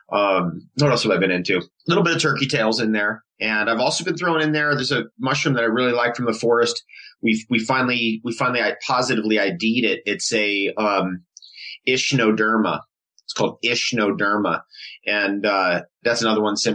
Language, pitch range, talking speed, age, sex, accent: English, 105-125 Hz, 195 wpm, 30-49, male, American